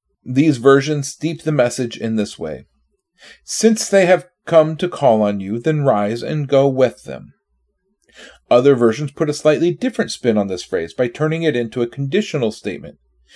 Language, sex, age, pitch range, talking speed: English, male, 40-59, 115-160 Hz, 175 wpm